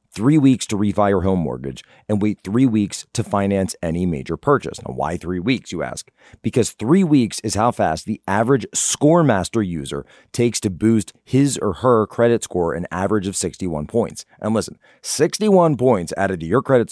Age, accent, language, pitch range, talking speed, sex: 30-49, American, English, 95-125 Hz, 190 wpm, male